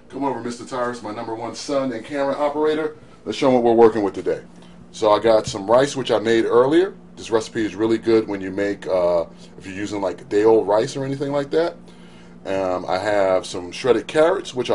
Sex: male